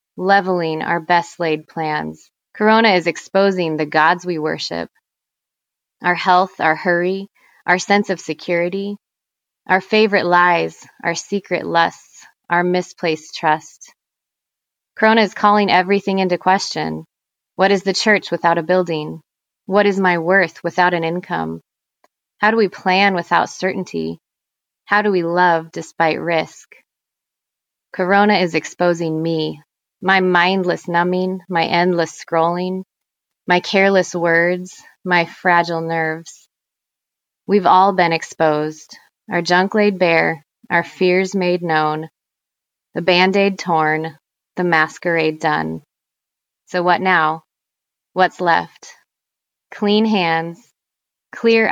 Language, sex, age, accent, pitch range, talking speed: English, female, 20-39, American, 165-190 Hz, 120 wpm